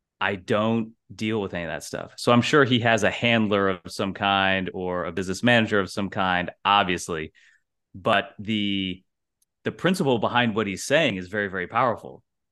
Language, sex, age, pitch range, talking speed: English, male, 30-49, 95-115 Hz, 180 wpm